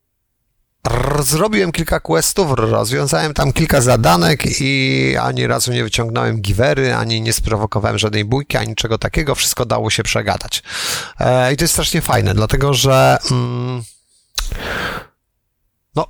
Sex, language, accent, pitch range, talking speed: male, Polish, native, 110-145 Hz, 125 wpm